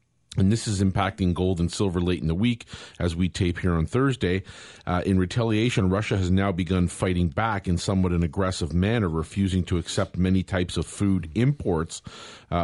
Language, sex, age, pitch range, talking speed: English, male, 40-59, 90-105 Hz, 190 wpm